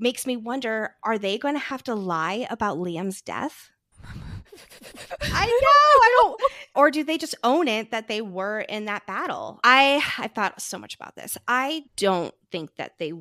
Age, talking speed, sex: 20-39, 185 wpm, female